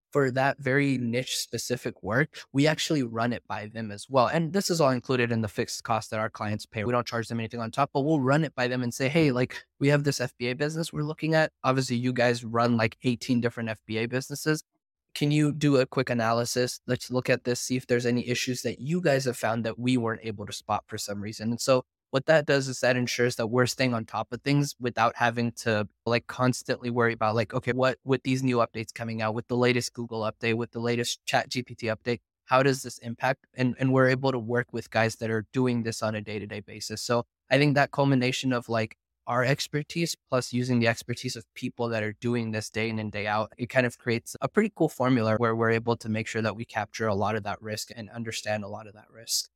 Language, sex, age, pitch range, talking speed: English, male, 20-39, 115-130 Hz, 250 wpm